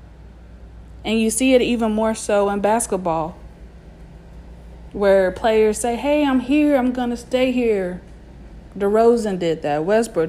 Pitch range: 165-225 Hz